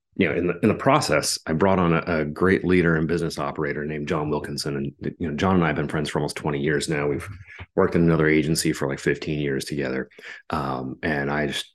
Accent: American